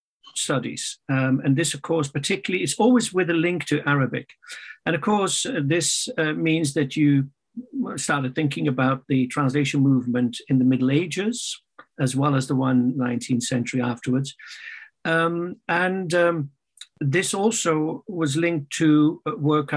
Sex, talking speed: male, 150 wpm